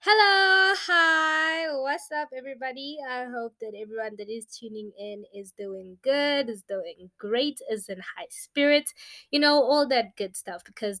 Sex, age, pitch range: female, 20-39, 195-245 Hz